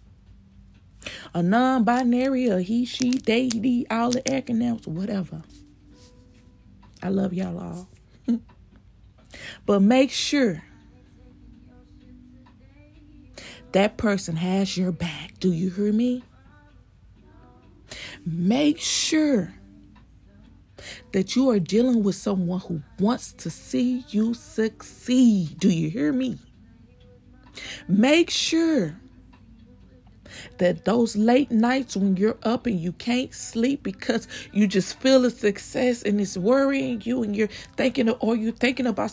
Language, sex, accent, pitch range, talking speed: English, female, American, 160-245 Hz, 115 wpm